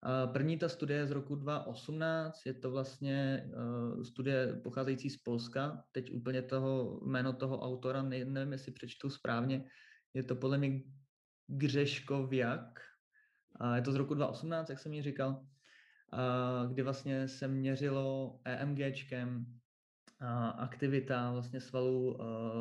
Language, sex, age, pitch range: Czech, male, 20-39, 125-140 Hz